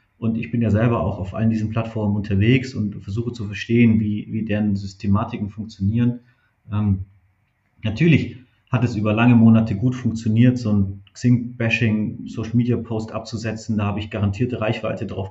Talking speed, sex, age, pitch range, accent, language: 155 wpm, male, 30-49, 105-125 Hz, German, German